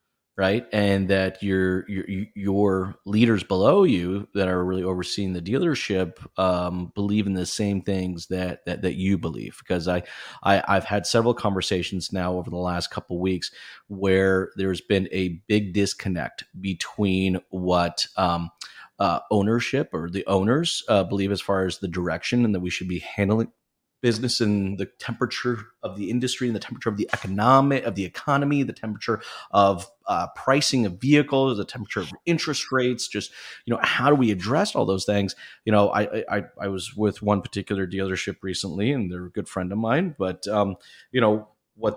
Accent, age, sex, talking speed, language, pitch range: American, 30-49, male, 185 wpm, English, 95-115 Hz